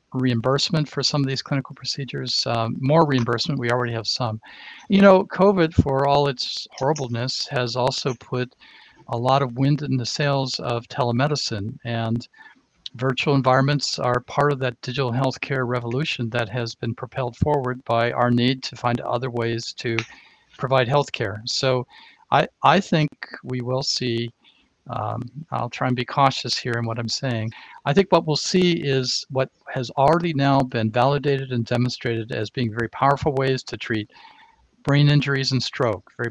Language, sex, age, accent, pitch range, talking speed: English, male, 50-69, American, 120-140 Hz, 170 wpm